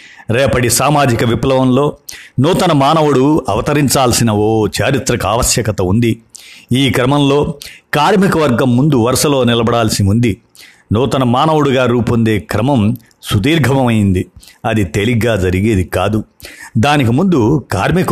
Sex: male